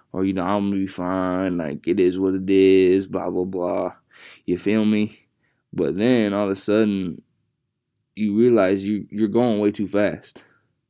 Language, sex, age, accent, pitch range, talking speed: English, male, 20-39, American, 95-110 Hz, 195 wpm